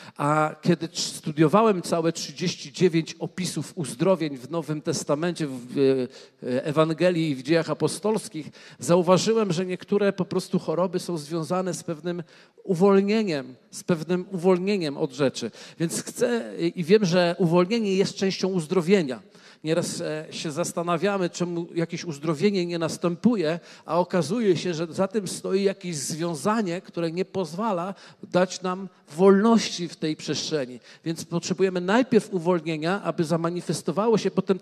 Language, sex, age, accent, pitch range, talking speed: Polish, male, 50-69, native, 170-210 Hz, 130 wpm